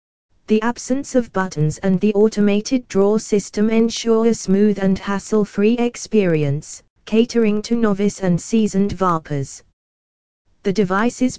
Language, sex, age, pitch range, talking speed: English, female, 20-39, 175-215 Hz, 120 wpm